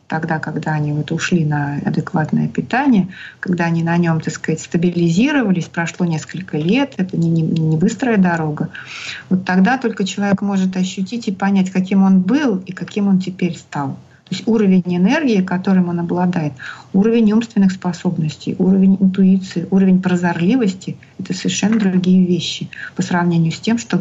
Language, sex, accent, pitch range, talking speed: Russian, female, native, 170-195 Hz, 155 wpm